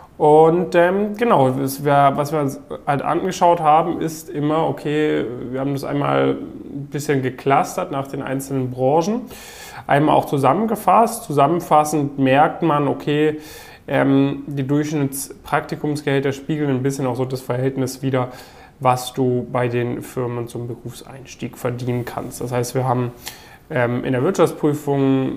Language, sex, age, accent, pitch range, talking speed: German, male, 10-29, German, 125-150 Hz, 135 wpm